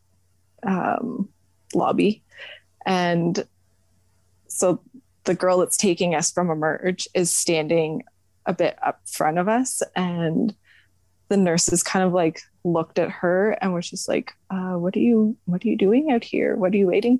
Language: English